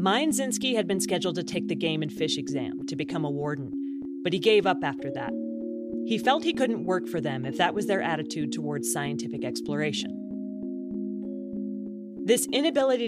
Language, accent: English, American